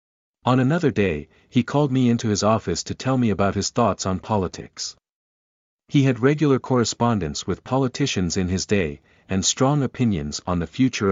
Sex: male